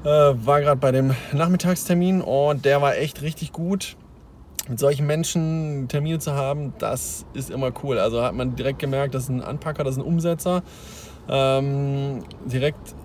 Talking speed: 160 wpm